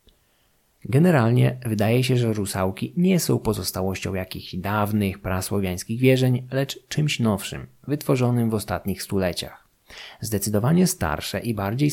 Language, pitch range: Polish, 95-125 Hz